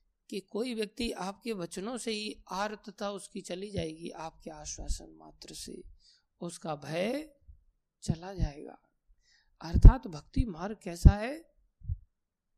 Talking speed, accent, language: 120 wpm, native, Hindi